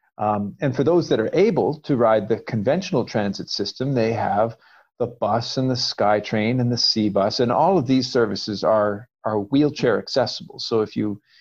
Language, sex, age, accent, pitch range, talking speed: English, male, 50-69, American, 105-130 Hz, 190 wpm